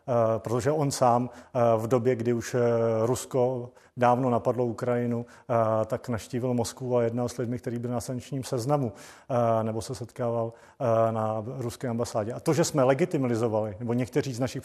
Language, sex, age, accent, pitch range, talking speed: Czech, male, 40-59, native, 120-135 Hz, 175 wpm